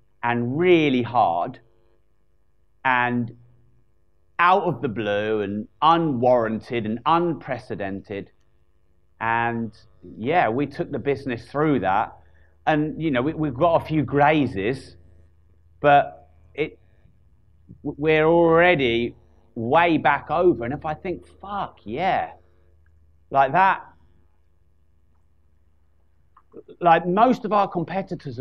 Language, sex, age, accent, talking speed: English, male, 40-59, British, 100 wpm